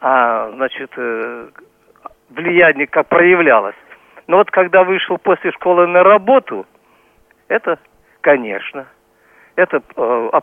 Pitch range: 145-185 Hz